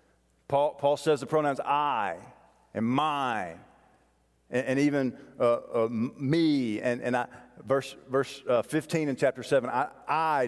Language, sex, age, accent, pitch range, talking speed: English, male, 40-59, American, 105-140 Hz, 150 wpm